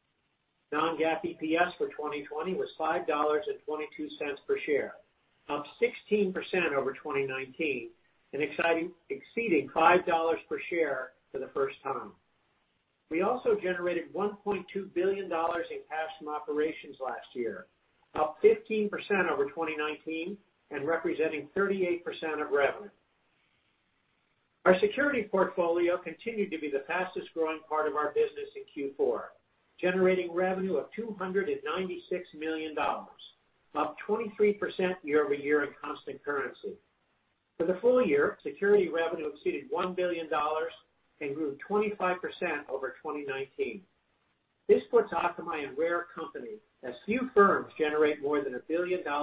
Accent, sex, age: American, male, 50-69